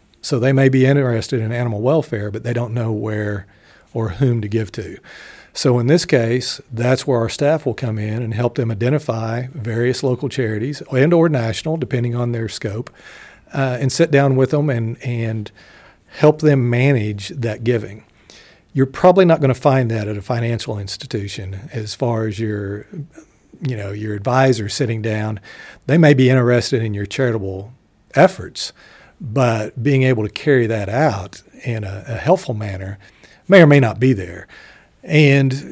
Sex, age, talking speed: male, 50-69, 175 wpm